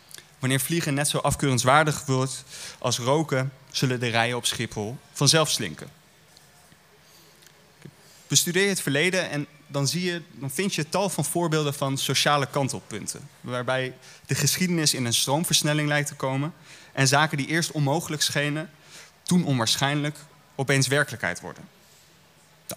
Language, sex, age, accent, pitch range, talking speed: Dutch, male, 30-49, Dutch, 120-150 Hz, 140 wpm